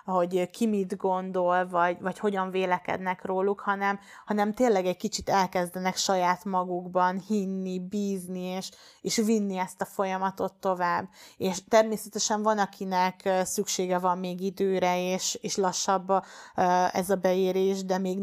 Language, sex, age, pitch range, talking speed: Hungarian, female, 30-49, 180-195 Hz, 140 wpm